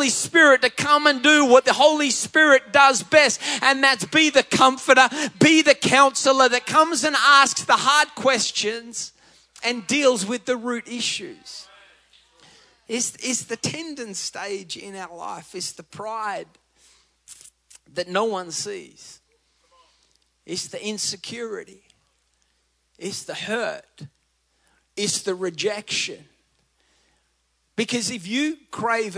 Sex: male